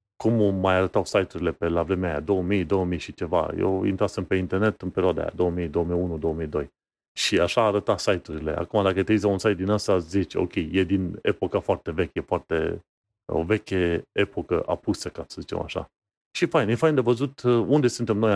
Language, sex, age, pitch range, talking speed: Romanian, male, 30-49, 90-110 Hz, 190 wpm